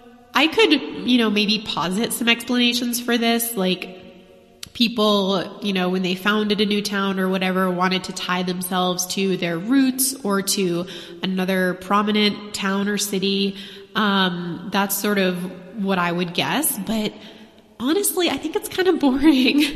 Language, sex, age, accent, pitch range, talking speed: English, female, 20-39, American, 185-255 Hz, 160 wpm